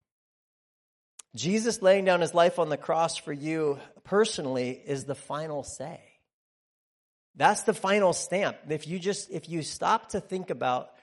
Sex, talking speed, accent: male, 150 wpm, American